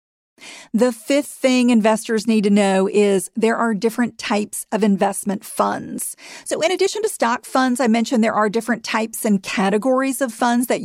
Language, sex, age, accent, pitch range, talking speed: English, female, 40-59, American, 200-245 Hz, 175 wpm